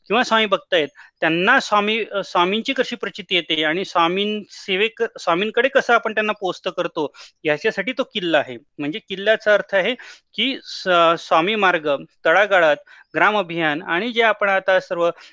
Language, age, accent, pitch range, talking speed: Marathi, 30-49, native, 155-195 Hz, 80 wpm